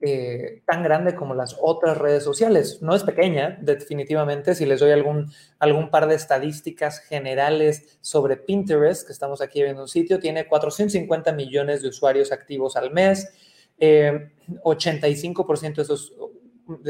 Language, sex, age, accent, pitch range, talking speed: Spanish, male, 30-49, Mexican, 145-175 Hz, 140 wpm